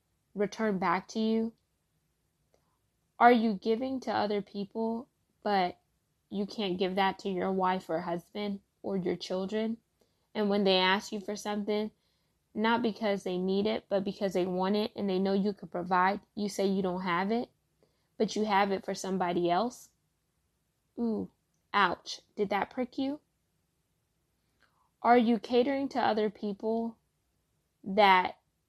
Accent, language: American, English